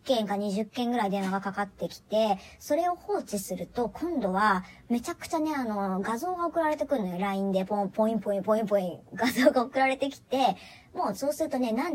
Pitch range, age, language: 200-320 Hz, 40-59, Japanese